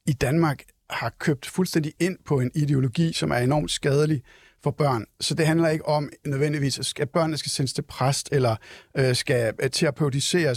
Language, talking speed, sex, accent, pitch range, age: Danish, 170 wpm, male, native, 140-170 Hz, 60-79